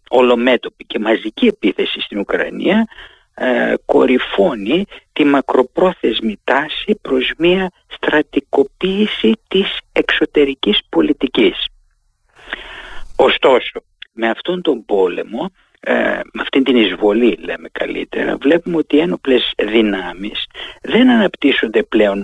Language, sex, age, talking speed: Greek, male, 50-69, 95 wpm